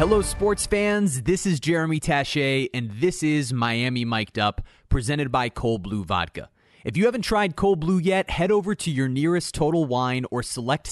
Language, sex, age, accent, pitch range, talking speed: English, male, 30-49, American, 115-155 Hz, 185 wpm